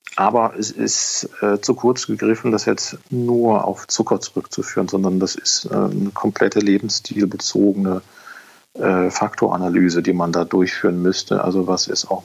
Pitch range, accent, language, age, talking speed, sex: 95-110 Hz, German, German, 40-59, 150 wpm, male